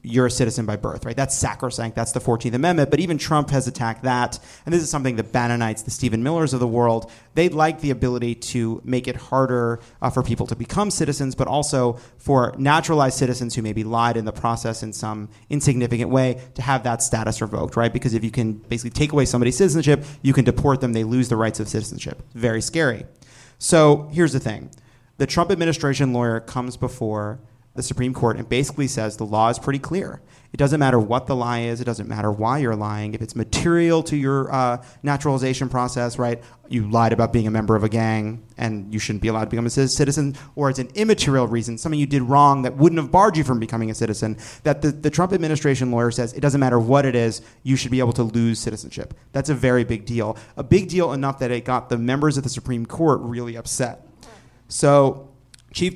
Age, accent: 30-49, American